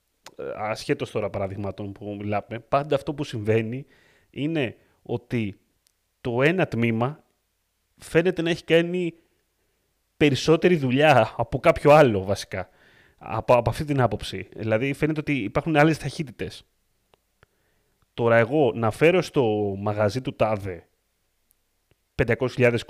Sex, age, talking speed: male, 30-49, 115 wpm